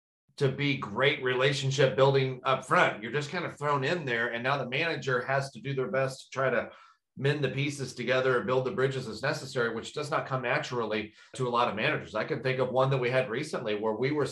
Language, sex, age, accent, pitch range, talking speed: English, male, 40-59, American, 125-140 Hz, 245 wpm